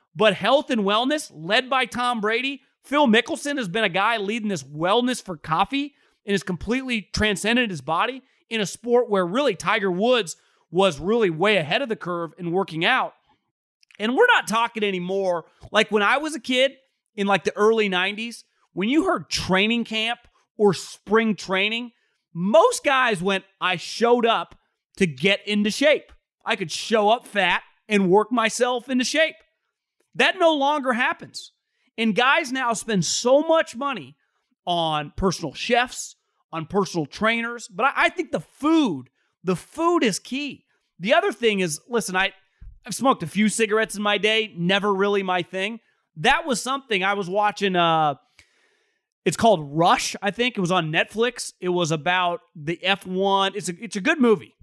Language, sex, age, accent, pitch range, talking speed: English, male, 30-49, American, 185-245 Hz, 170 wpm